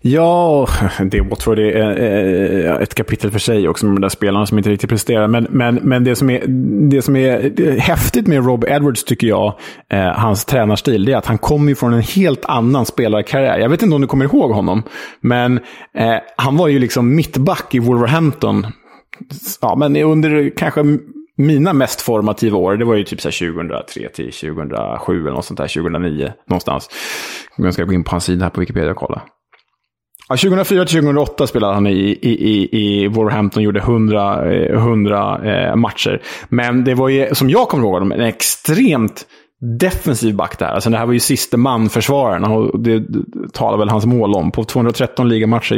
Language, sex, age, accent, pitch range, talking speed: Swedish, male, 20-39, Norwegian, 105-135 Hz, 180 wpm